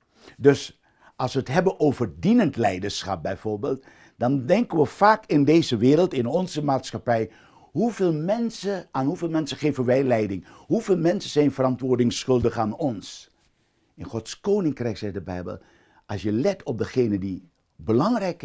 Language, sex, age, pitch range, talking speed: Dutch, male, 60-79, 105-150 Hz, 150 wpm